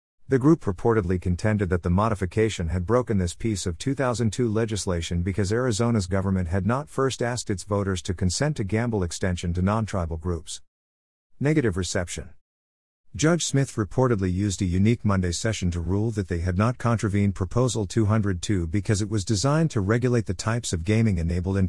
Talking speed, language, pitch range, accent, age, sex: 170 wpm, English, 90-115 Hz, American, 50-69, male